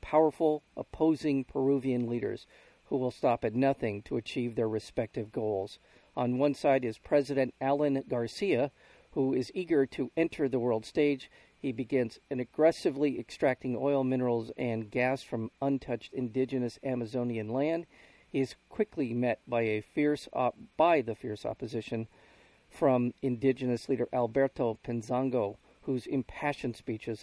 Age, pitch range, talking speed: 50-69, 120-140 Hz, 140 wpm